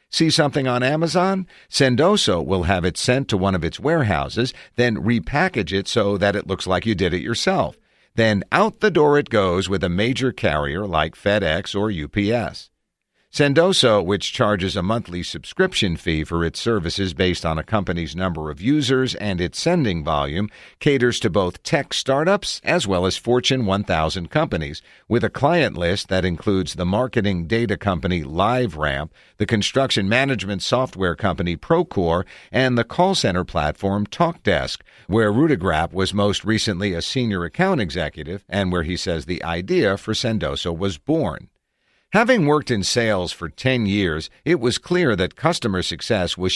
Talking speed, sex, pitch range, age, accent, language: 165 wpm, male, 90-125 Hz, 50-69, American, English